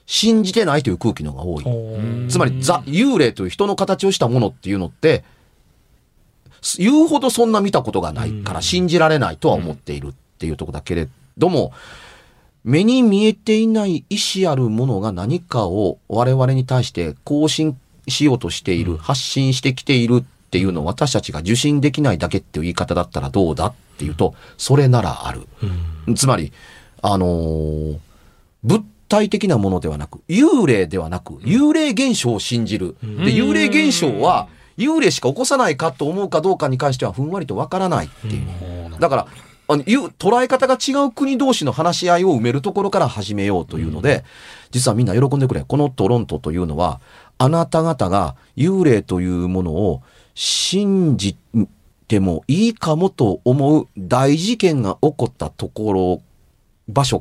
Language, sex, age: Japanese, male, 40-59